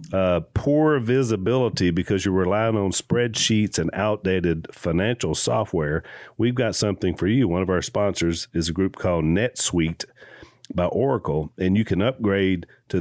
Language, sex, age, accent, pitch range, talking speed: English, male, 40-59, American, 90-115 Hz, 150 wpm